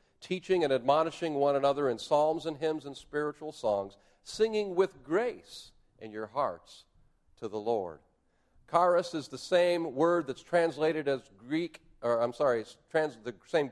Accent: American